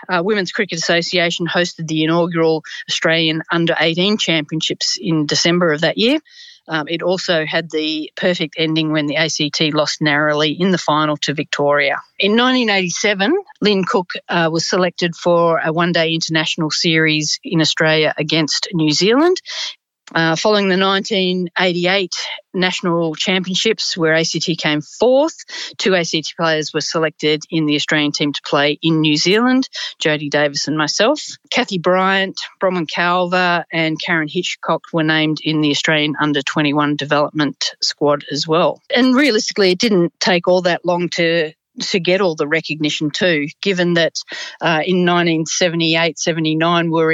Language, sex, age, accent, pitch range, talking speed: English, female, 40-59, Australian, 155-185 Hz, 150 wpm